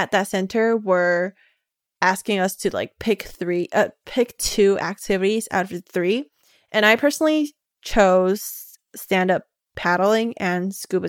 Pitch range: 185-220 Hz